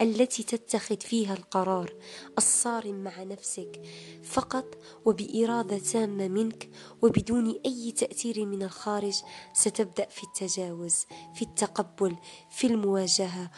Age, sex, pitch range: 20-39, female, 185-225 Hz